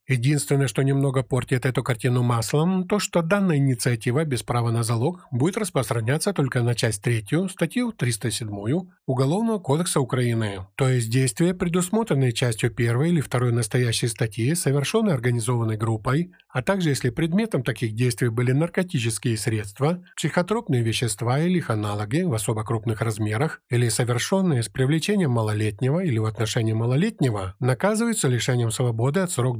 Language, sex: Ukrainian, male